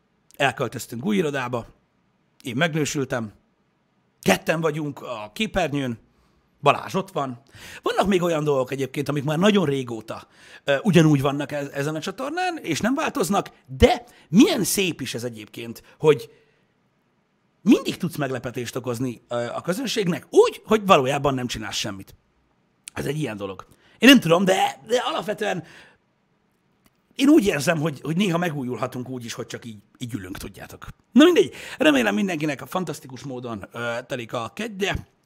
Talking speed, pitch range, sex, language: 145 wpm, 125-180 Hz, male, Hungarian